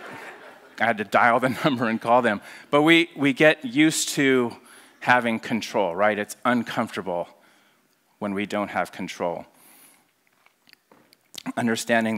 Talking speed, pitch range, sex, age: 130 wpm, 95-120 Hz, male, 30-49